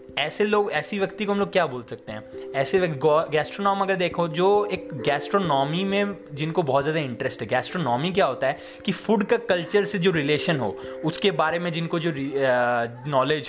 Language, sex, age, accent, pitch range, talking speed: Hindi, male, 20-39, native, 130-175 Hz, 190 wpm